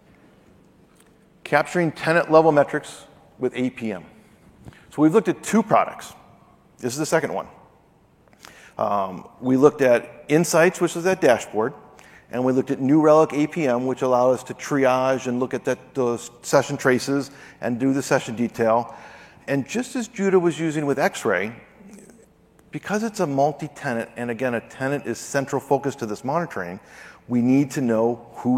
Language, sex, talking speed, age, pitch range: English, male, 155 wpm, 40-59, 125-160 Hz